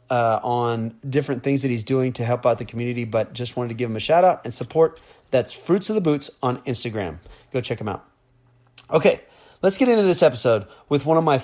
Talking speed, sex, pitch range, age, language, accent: 230 wpm, male, 125-150 Hz, 30-49, English, American